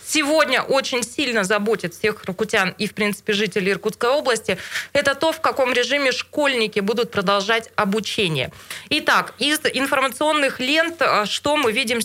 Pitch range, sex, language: 215-265 Hz, female, Russian